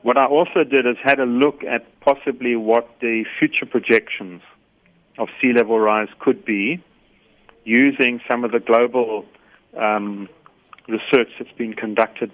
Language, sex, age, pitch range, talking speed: English, male, 40-59, 110-125 Hz, 145 wpm